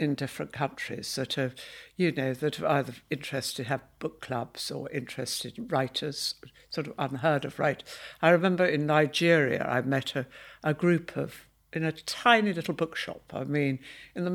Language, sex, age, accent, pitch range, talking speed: English, female, 60-79, British, 135-170 Hz, 175 wpm